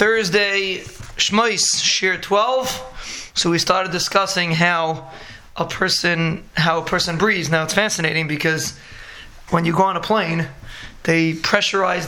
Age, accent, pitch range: 20-39, American, 165-190 Hz